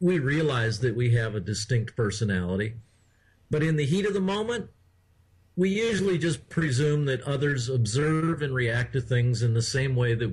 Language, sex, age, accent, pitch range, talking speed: English, male, 50-69, American, 115-165 Hz, 180 wpm